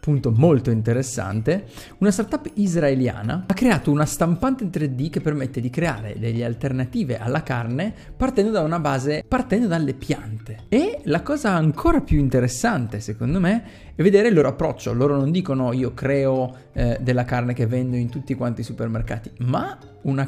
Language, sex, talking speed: Italian, male, 170 wpm